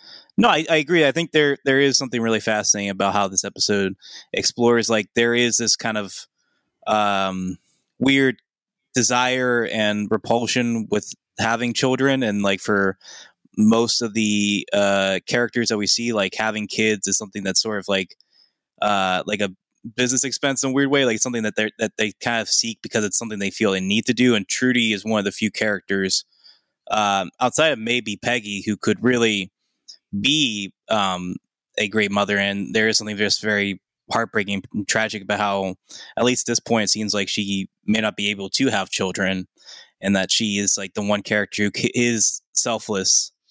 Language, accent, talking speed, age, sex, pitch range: English, American, 190 wpm, 20-39, male, 100-120 Hz